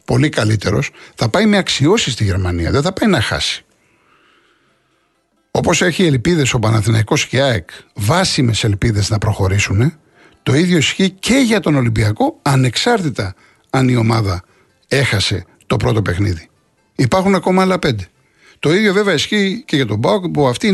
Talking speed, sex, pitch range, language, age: 155 wpm, male, 120-195 Hz, Greek, 60-79